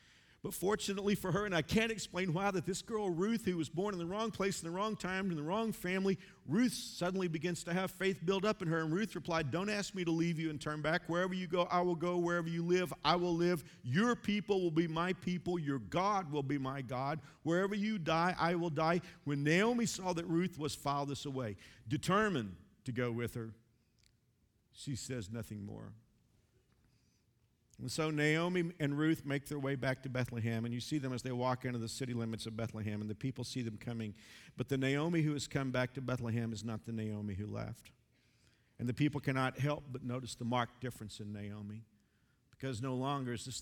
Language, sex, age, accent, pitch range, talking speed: English, male, 50-69, American, 115-170 Hz, 220 wpm